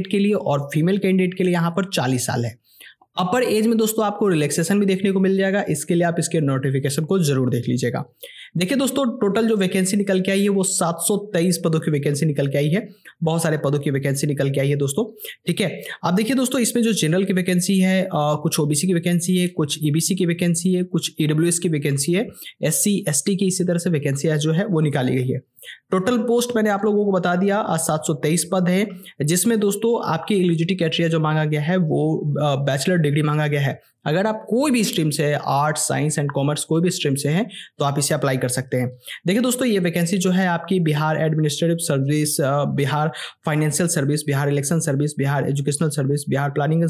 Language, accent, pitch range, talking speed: Hindi, native, 145-190 Hz, 145 wpm